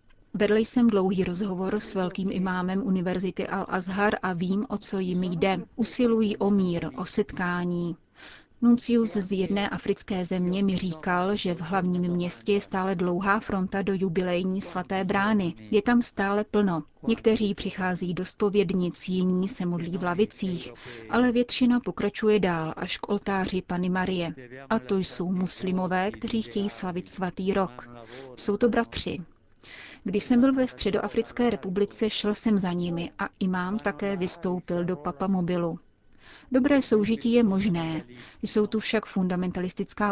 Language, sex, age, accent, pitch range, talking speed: Czech, female, 30-49, native, 180-210 Hz, 145 wpm